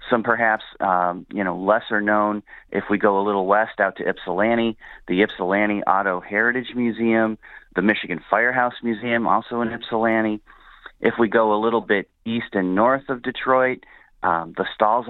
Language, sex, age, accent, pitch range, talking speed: English, male, 40-59, American, 90-115 Hz, 165 wpm